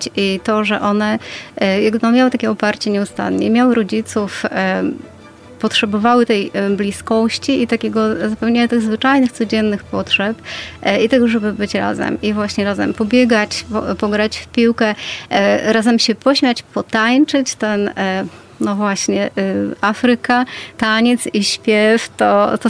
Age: 30-49